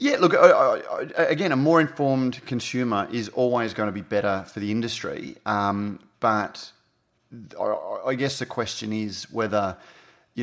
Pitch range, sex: 100-120 Hz, male